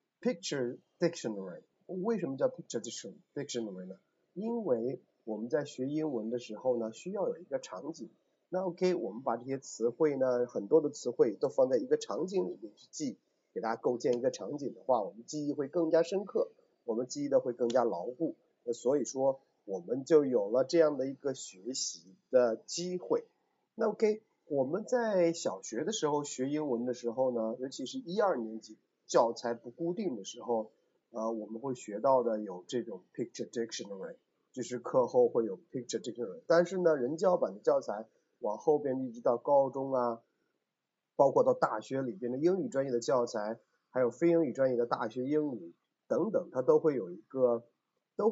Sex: male